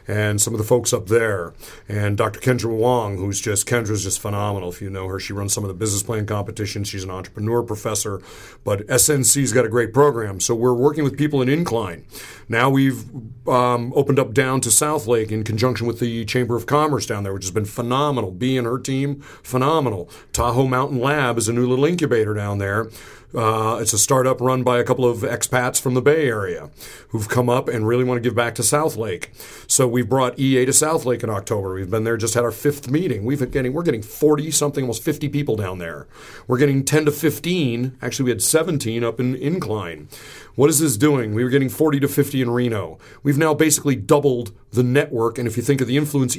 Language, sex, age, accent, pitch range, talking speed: English, male, 40-59, American, 110-140 Hz, 220 wpm